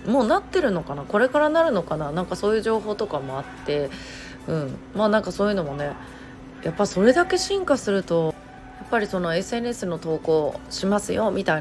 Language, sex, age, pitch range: Japanese, female, 30-49, 150-235 Hz